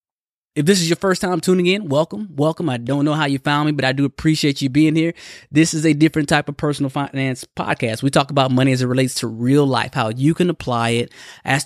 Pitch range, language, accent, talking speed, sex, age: 130-155 Hz, English, American, 250 wpm, male, 20-39